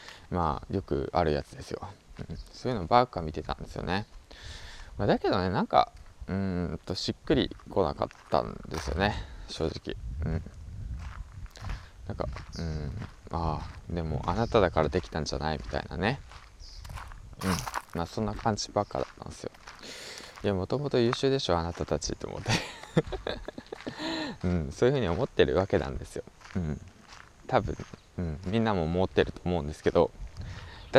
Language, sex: Japanese, male